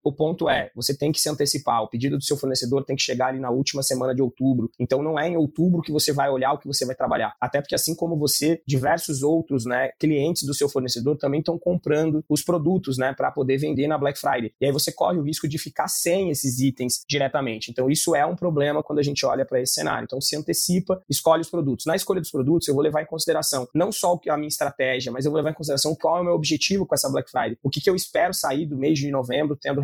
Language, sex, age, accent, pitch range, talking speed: Portuguese, male, 20-39, Brazilian, 130-160 Hz, 260 wpm